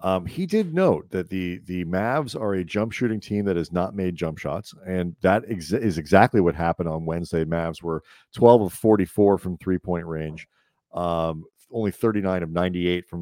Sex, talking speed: male, 190 wpm